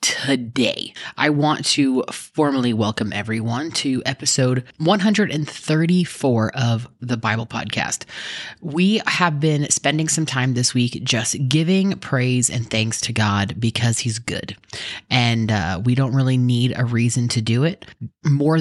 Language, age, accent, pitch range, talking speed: English, 20-39, American, 120-155 Hz, 140 wpm